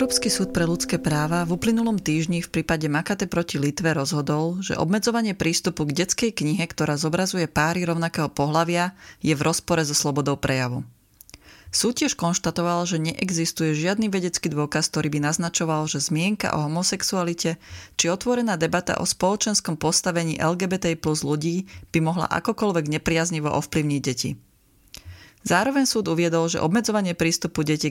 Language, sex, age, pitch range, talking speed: Slovak, female, 30-49, 150-180 Hz, 145 wpm